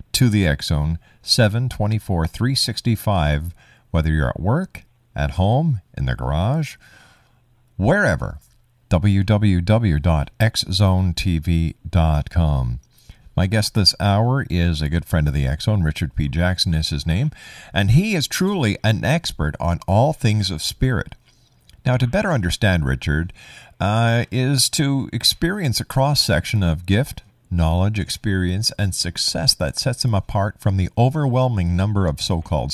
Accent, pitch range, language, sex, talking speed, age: American, 80-115 Hz, English, male, 130 wpm, 50-69